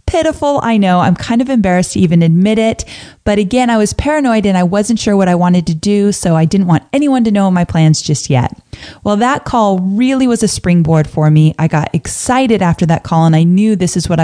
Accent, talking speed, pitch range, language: American, 240 wpm, 170-225 Hz, English